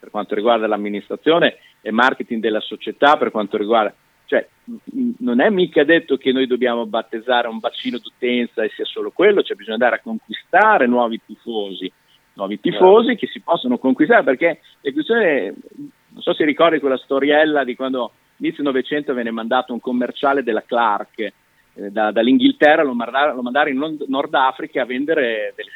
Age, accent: 50-69, native